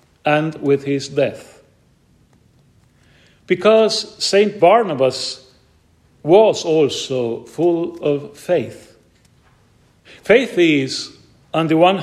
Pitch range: 130-180 Hz